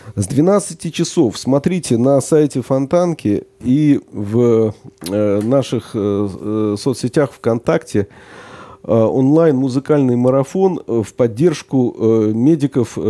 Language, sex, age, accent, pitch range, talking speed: Russian, male, 40-59, native, 110-145 Hz, 80 wpm